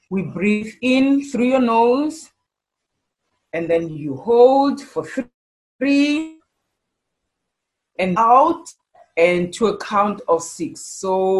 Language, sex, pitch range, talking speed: English, female, 190-260 Hz, 110 wpm